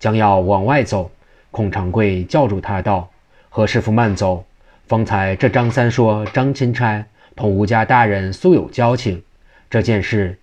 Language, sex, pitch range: Chinese, male, 95-115 Hz